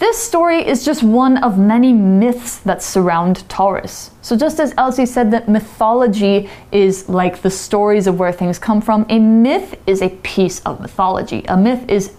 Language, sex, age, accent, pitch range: Chinese, female, 20-39, American, 190-260 Hz